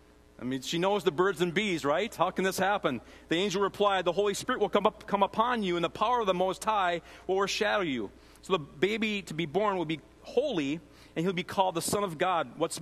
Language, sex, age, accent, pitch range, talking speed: English, male, 40-59, American, 120-185 Hz, 250 wpm